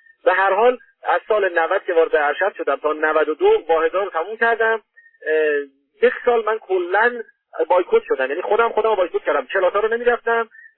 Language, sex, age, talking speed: Persian, male, 40-59, 150 wpm